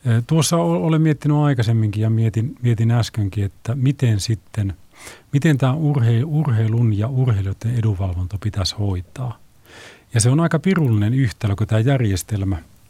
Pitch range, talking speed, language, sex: 100-125 Hz, 130 wpm, Finnish, male